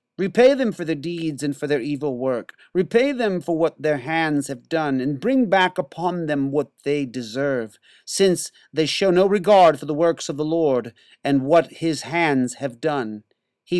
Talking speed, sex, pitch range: 190 wpm, male, 115-160 Hz